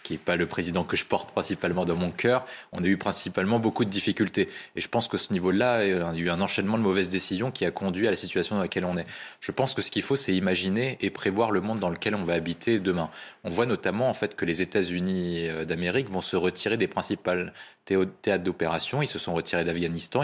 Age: 20-39